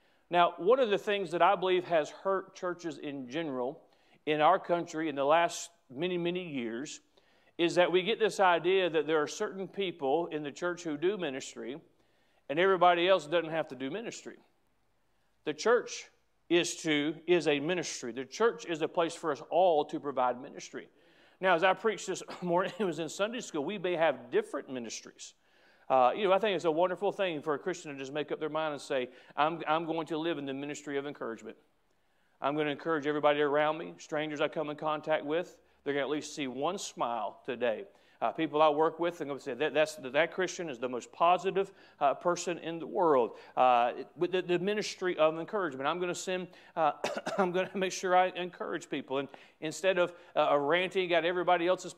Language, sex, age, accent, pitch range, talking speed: English, male, 40-59, American, 155-185 Hz, 215 wpm